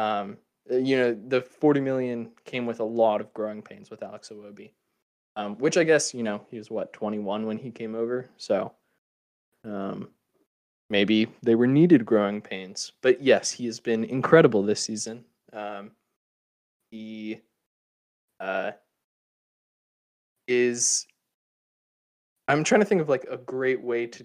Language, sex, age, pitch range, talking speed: English, male, 20-39, 105-130 Hz, 150 wpm